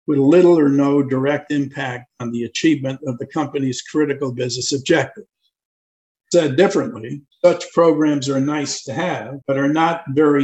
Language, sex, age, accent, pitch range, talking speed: English, male, 60-79, American, 135-155 Hz, 155 wpm